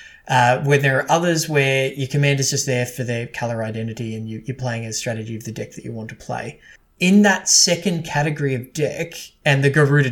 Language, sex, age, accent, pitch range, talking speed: English, male, 20-39, Australian, 120-150 Hz, 220 wpm